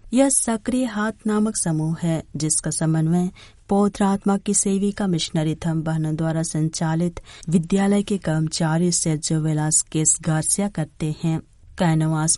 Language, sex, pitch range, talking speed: Hindi, female, 155-200 Hz, 125 wpm